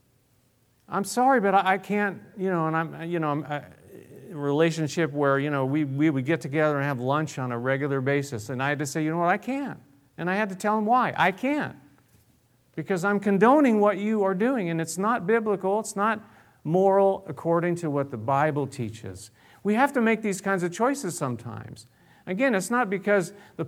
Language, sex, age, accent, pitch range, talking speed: English, male, 50-69, American, 135-195 Hz, 210 wpm